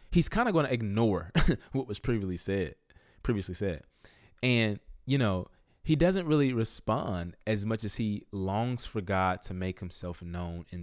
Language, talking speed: English, 170 wpm